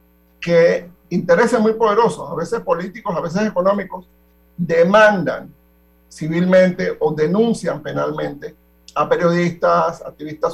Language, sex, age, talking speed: Spanish, male, 50-69, 100 wpm